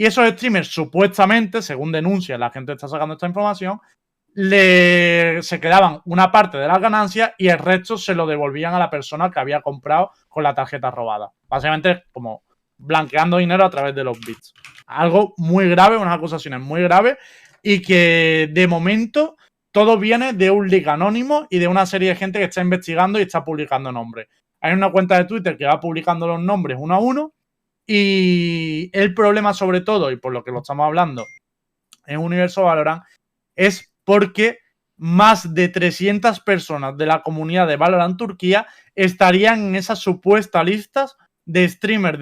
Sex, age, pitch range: male, 20-39, 155-200 Hz